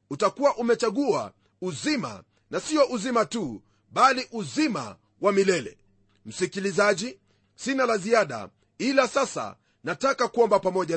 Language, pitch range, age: Swahili, 205-250 Hz, 40-59